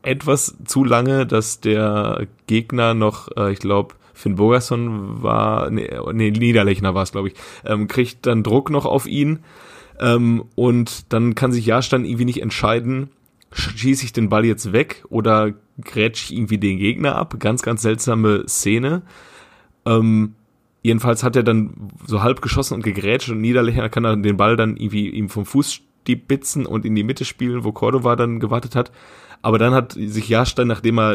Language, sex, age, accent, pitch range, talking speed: German, male, 30-49, German, 105-120 Hz, 180 wpm